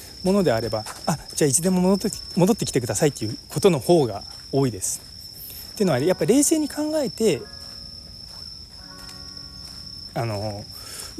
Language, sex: Japanese, male